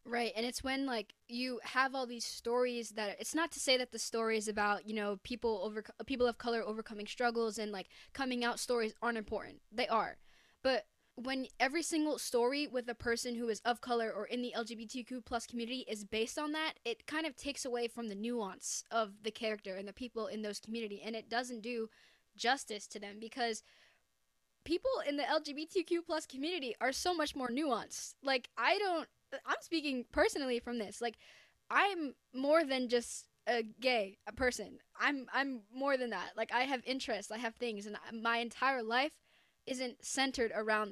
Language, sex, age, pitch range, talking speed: English, female, 10-29, 225-265 Hz, 190 wpm